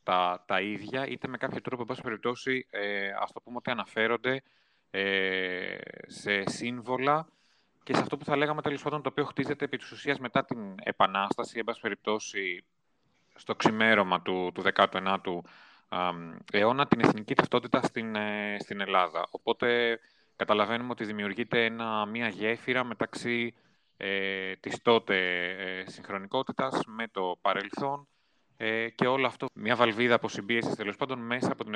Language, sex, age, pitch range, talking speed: Greek, male, 30-49, 95-125 Hz, 145 wpm